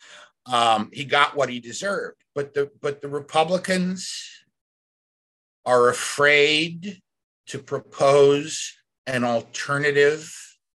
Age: 50-69